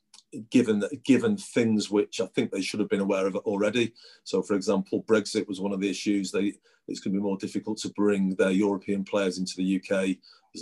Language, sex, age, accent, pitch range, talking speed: English, male, 40-59, British, 95-105 Hz, 210 wpm